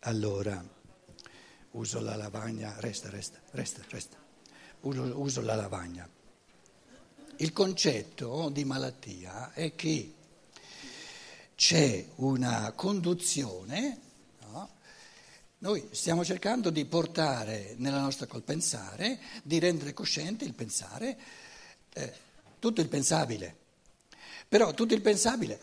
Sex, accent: male, native